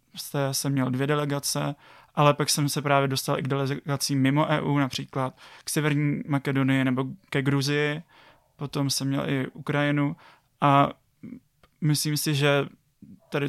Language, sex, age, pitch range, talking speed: Czech, male, 20-39, 135-145 Hz, 145 wpm